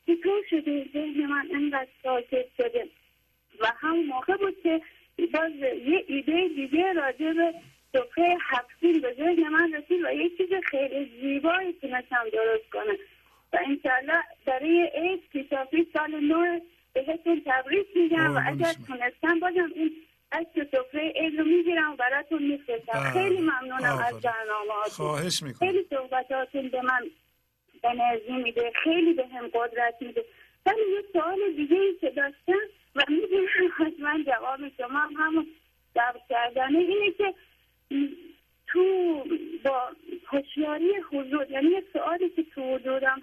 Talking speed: 110 wpm